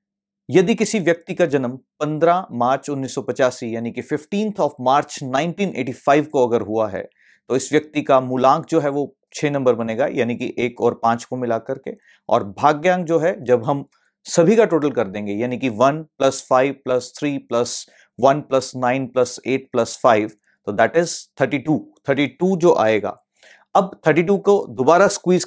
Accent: native